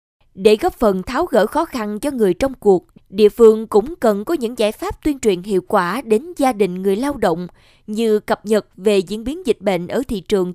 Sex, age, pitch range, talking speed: female, 20-39, 200-250 Hz, 230 wpm